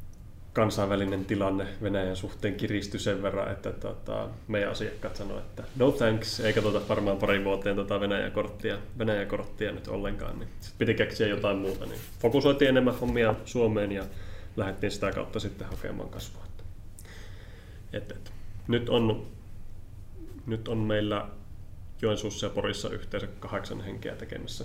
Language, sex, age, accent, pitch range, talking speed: Finnish, male, 20-39, native, 95-110 Hz, 135 wpm